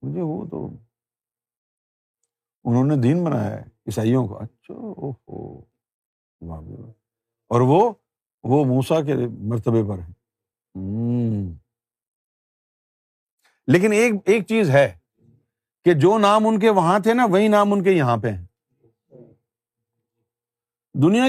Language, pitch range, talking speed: Urdu, 115-180 Hz, 120 wpm